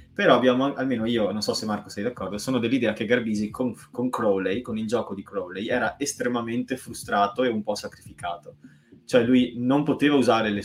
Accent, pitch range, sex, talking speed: native, 105-140 Hz, male, 195 wpm